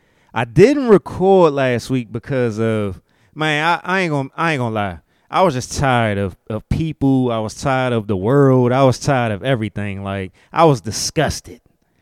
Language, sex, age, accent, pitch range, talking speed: English, male, 20-39, American, 110-140 Hz, 190 wpm